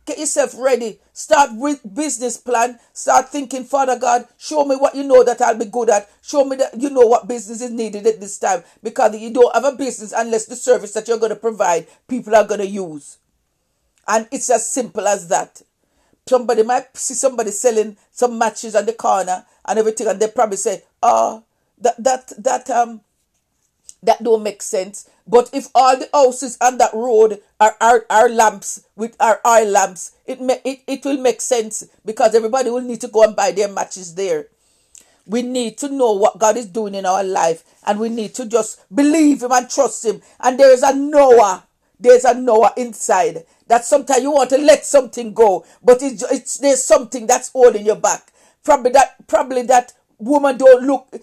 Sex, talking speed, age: female, 200 wpm, 50-69